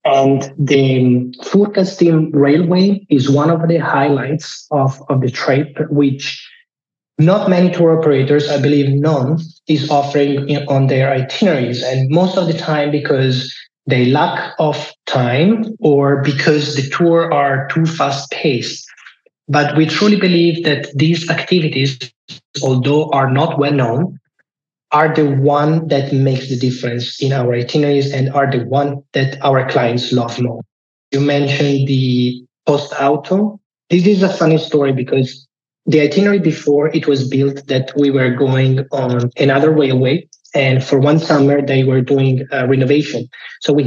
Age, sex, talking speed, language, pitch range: 30-49, male, 150 wpm, English, 135-155 Hz